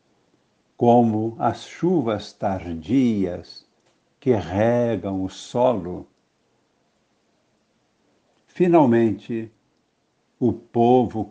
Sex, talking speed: male, 60 wpm